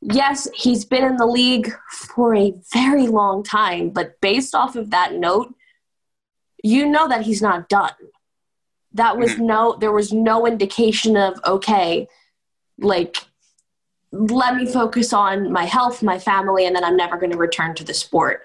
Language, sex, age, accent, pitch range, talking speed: English, female, 20-39, American, 190-235 Hz, 165 wpm